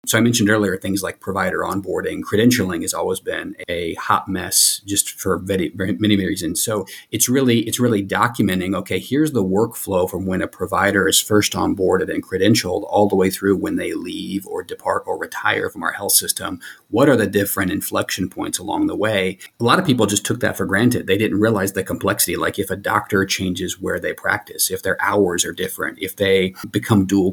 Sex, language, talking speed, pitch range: male, English, 210 wpm, 95-120 Hz